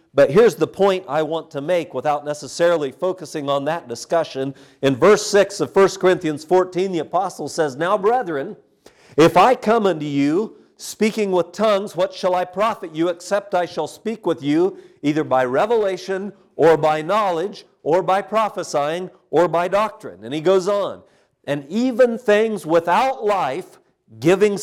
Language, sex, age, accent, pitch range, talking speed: English, male, 50-69, American, 155-205 Hz, 165 wpm